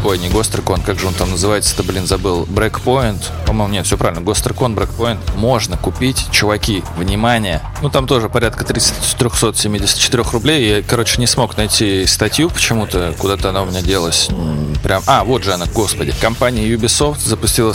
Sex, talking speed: male, 170 wpm